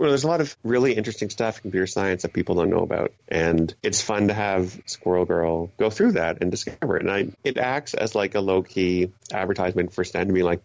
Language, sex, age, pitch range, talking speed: English, male, 30-49, 90-105 Hz, 240 wpm